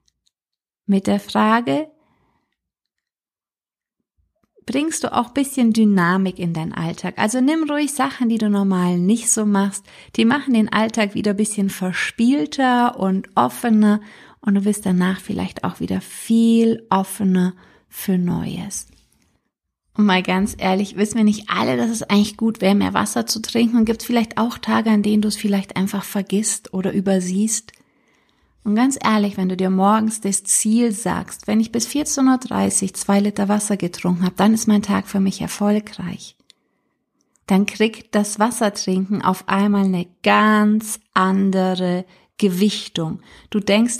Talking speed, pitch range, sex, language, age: 155 wpm, 190-225 Hz, female, German, 30-49